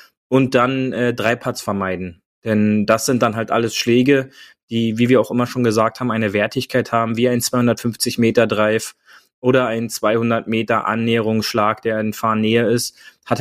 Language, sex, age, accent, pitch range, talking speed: German, male, 20-39, German, 115-130 Hz, 175 wpm